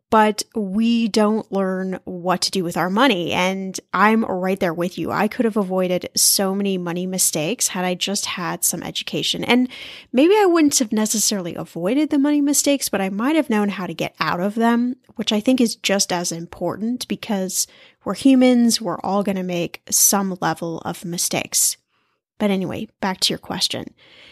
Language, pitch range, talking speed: English, 190-240 Hz, 190 wpm